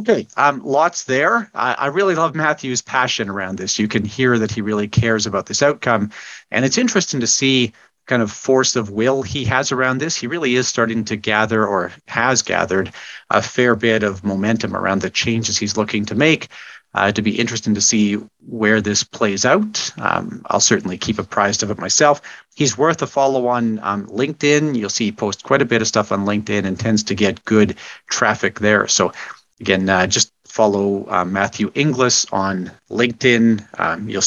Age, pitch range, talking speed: 40-59, 105-125 Hz, 195 wpm